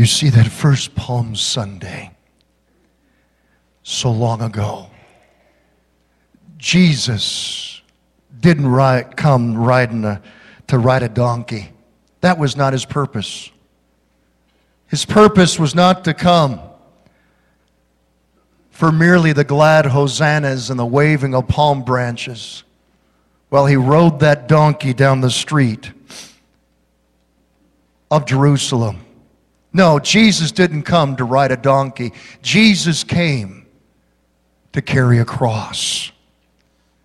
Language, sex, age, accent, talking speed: English, male, 50-69, American, 105 wpm